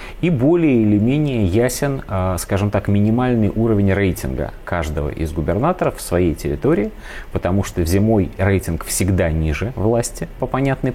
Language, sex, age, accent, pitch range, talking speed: Russian, male, 30-49, native, 90-125 Hz, 135 wpm